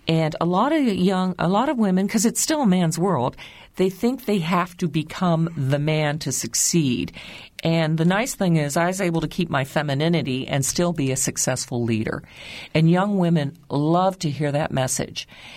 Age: 50-69